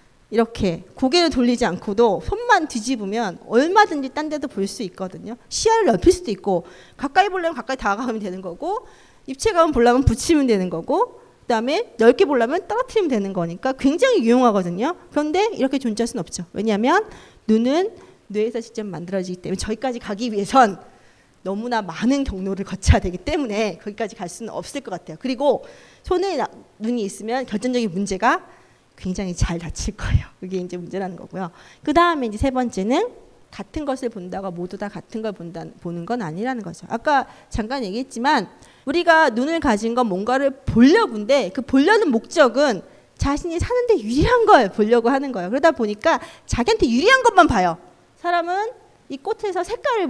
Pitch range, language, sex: 205-315 Hz, Korean, female